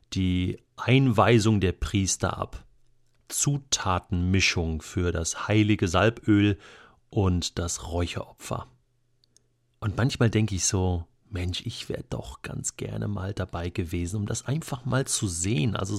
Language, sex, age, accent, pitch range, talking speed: German, male, 40-59, German, 100-125 Hz, 130 wpm